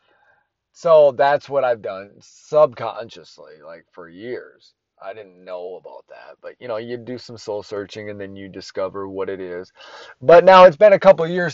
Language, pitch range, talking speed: English, 95-140 Hz, 190 wpm